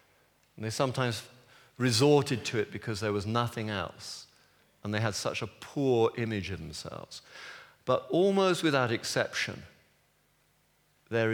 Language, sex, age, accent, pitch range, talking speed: English, male, 50-69, British, 110-160 Hz, 130 wpm